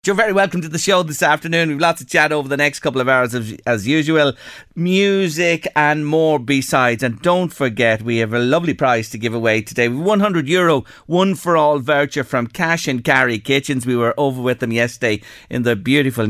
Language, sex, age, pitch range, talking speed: English, male, 40-59, 125-180 Hz, 210 wpm